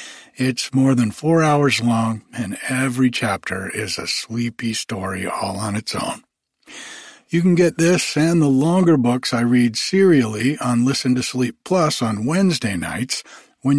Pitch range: 120-160 Hz